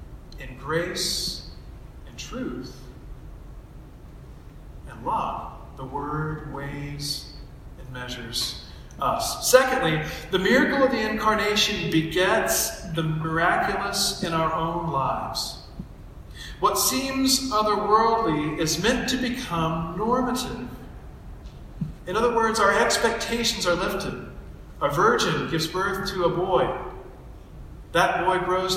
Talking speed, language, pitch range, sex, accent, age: 100 wpm, English, 160-210 Hz, male, American, 40-59